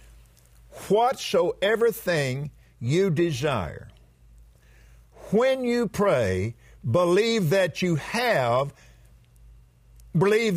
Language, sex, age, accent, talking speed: English, male, 50-69, American, 70 wpm